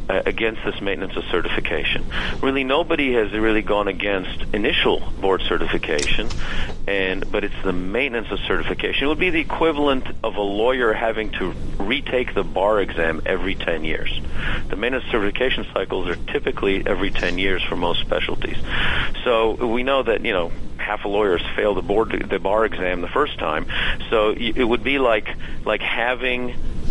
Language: English